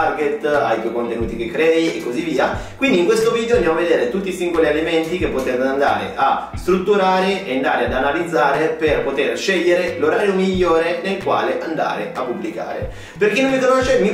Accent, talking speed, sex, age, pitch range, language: native, 185 wpm, male, 30-49, 140-195 Hz, Italian